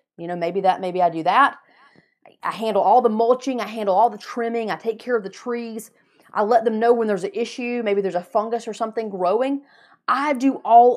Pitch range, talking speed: 195-265 Hz, 230 wpm